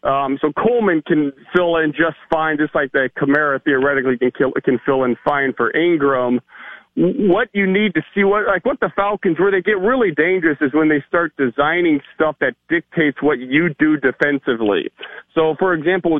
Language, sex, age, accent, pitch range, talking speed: English, male, 40-59, American, 145-195 Hz, 190 wpm